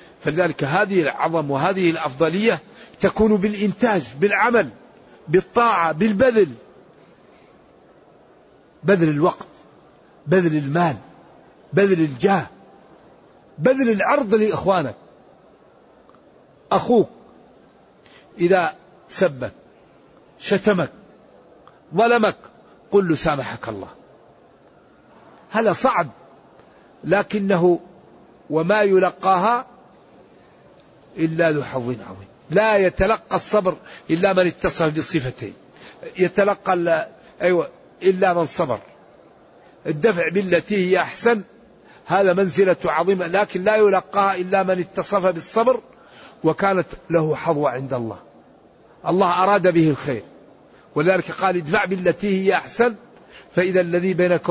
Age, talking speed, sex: 50-69, 90 wpm, male